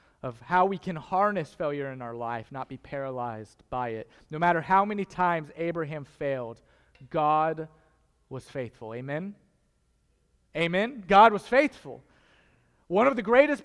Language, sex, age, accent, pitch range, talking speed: English, male, 30-49, American, 145-220 Hz, 145 wpm